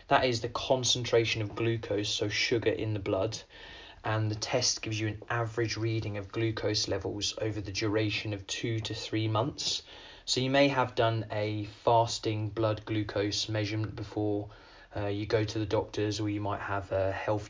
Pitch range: 100-110 Hz